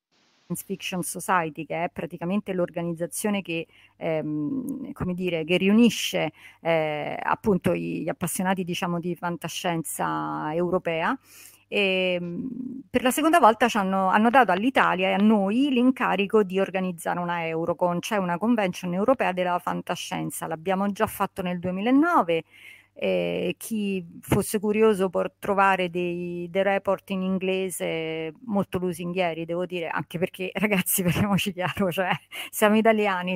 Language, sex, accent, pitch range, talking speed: Italian, female, native, 175-205 Hz, 130 wpm